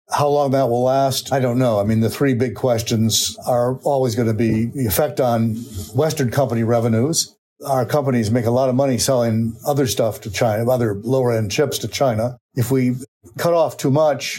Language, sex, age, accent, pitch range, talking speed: English, male, 50-69, American, 115-135 Hz, 205 wpm